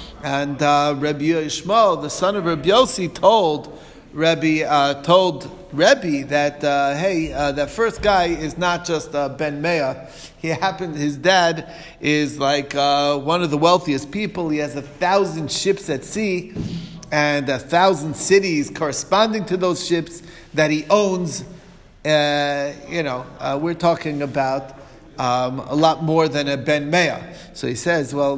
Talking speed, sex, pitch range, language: 155 wpm, male, 140-170 Hz, English